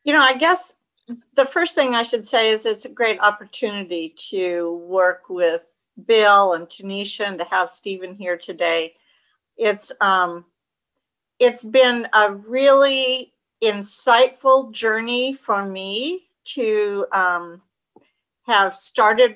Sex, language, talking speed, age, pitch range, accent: female, English, 125 wpm, 50-69, 195-250 Hz, American